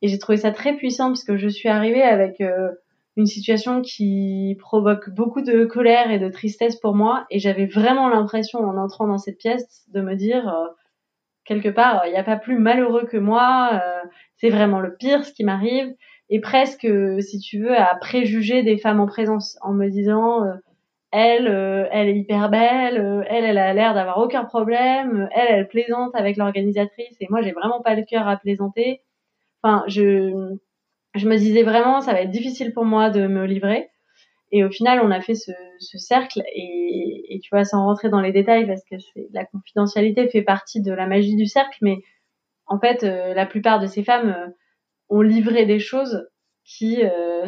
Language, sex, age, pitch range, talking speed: French, female, 20-39, 200-235 Hz, 205 wpm